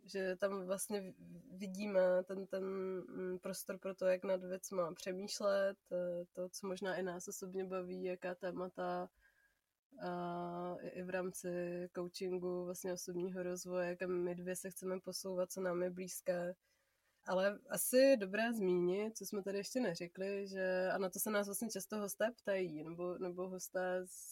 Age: 20-39